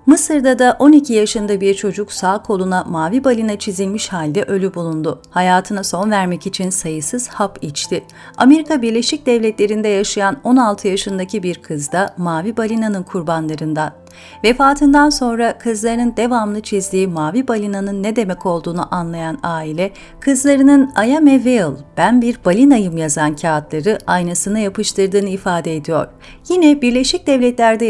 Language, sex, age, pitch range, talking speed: Turkish, female, 40-59, 185-245 Hz, 130 wpm